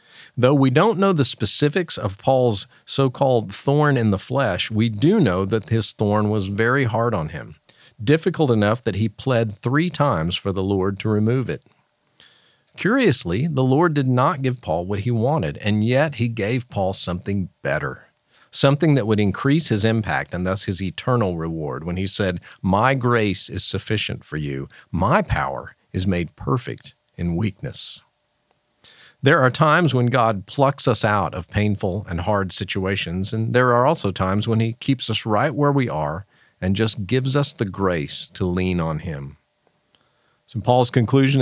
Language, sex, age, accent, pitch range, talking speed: English, male, 50-69, American, 100-135 Hz, 175 wpm